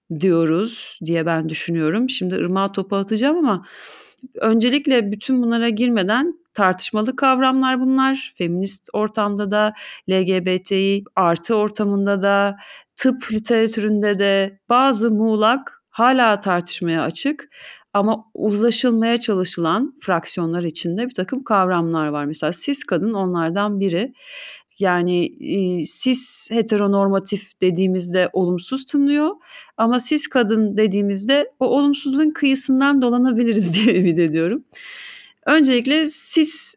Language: Turkish